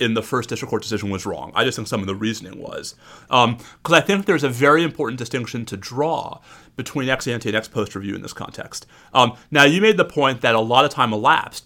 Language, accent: English, American